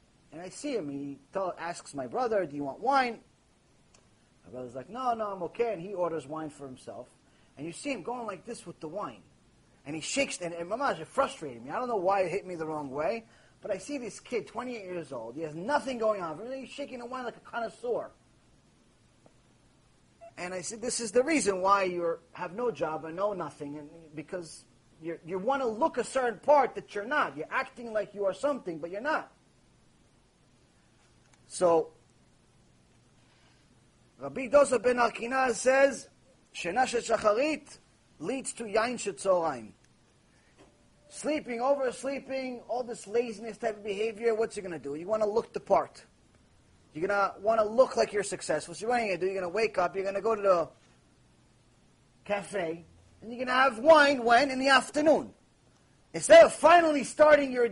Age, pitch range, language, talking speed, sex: 30-49, 170-255 Hz, English, 190 wpm, male